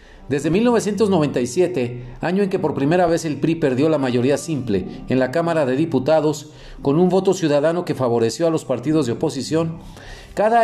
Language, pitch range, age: Spanish, 125-180 Hz, 50-69